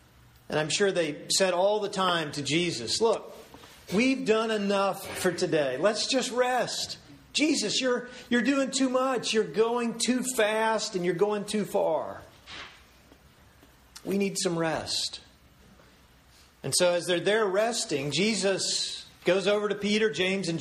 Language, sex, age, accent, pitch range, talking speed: English, male, 40-59, American, 155-210 Hz, 150 wpm